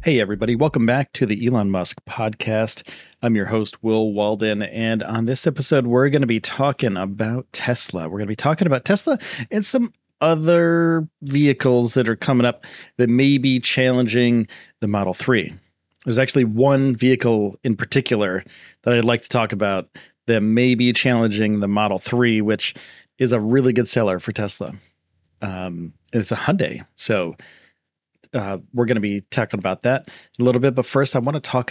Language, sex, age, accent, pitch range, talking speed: English, male, 40-59, American, 105-130 Hz, 180 wpm